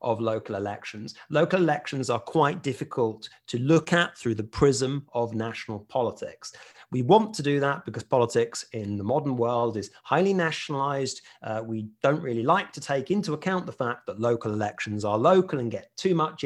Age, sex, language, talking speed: 30-49, male, English, 185 wpm